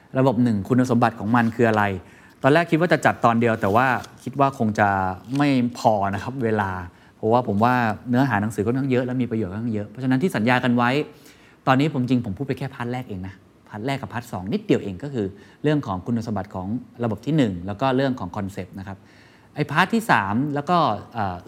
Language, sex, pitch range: Thai, male, 105-140 Hz